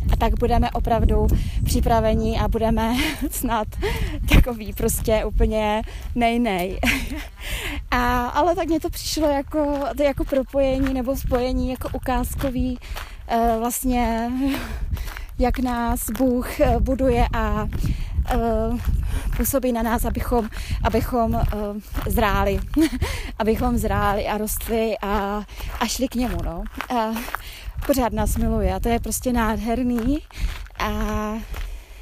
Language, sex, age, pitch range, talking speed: Czech, female, 20-39, 215-250 Hz, 115 wpm